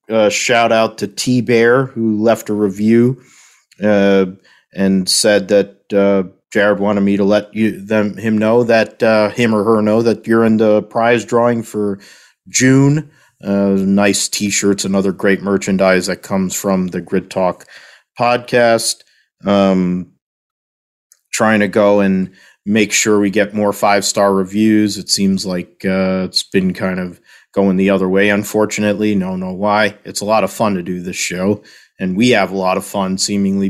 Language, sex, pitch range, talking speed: English, male, 95-105 Hz, 175 wpm